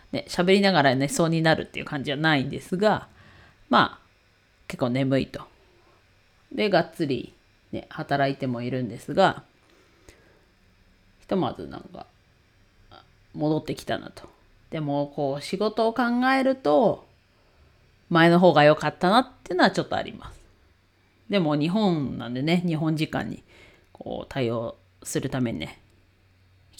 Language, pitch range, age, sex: Japanese, 120-180 Hz, 40-59, female